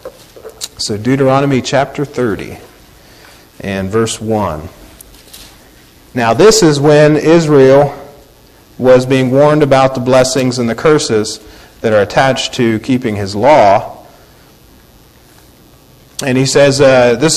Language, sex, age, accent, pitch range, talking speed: English, male, 40-59, American, 115-145 Hz, 115 wpm